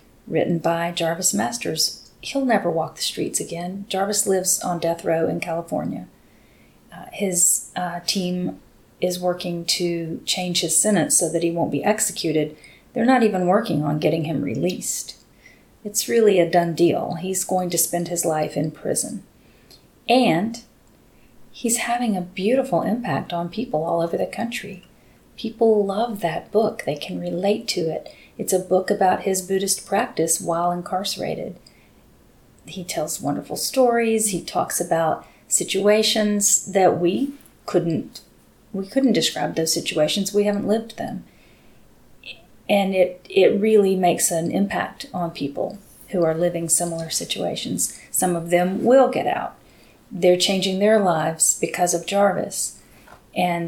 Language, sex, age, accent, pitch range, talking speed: English, female, 30-49, American, 170-205 Hz, 150 wpm